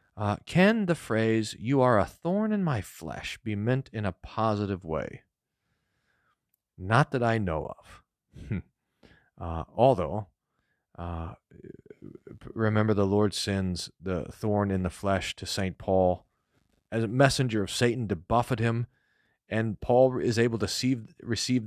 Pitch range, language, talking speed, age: 95-135 Hz, English, 145 wpm, 40-59